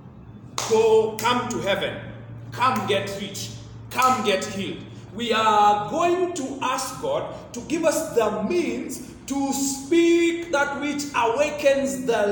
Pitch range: 220-300 Hz